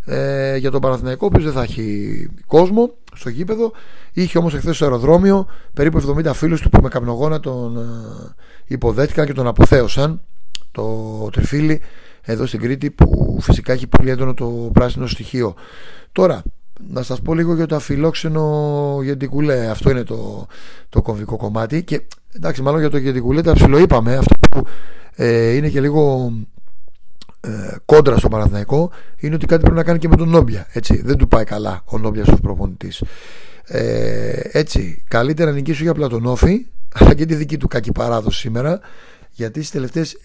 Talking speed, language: 165 wpm, Greek